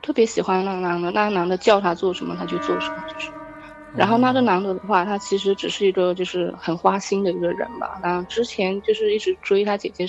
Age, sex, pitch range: 20-39, female, 185-230 Hz